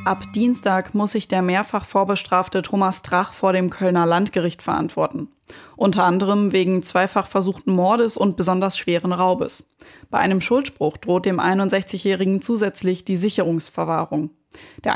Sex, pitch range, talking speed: female, 180-210 Hz, 135 wpm